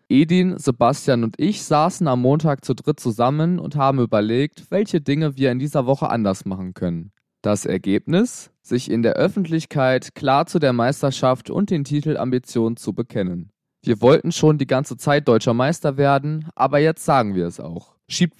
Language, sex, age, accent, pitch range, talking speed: German, male, 20-39, German, 115-165 Hz, 175 wpm